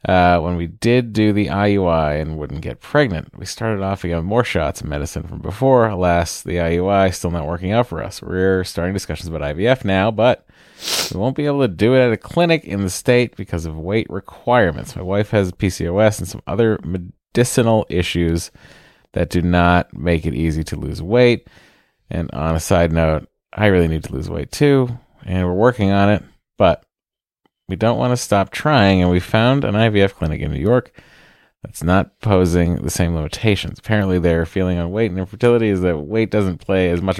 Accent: American